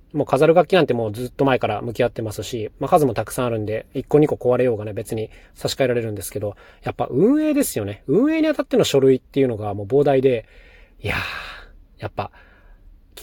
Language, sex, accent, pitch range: Japanese, male, native, 110-145 Hz